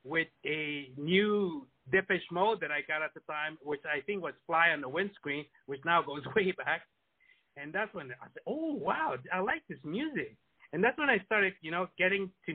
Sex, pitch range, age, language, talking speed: male, 145-185 Hz, 60-79, English, 210 wpm